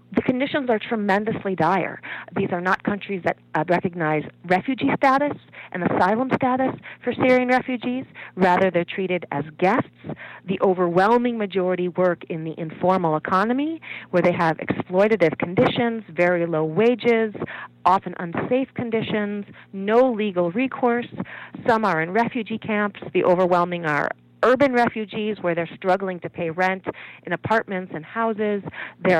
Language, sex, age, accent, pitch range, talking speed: English, female, 40-59, American, 180-240 Hz, 140 wpm